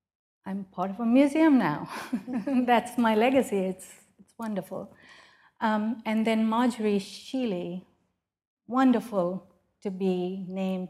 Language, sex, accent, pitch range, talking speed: English, female, Indian, 190-215 Hz, 115 wpm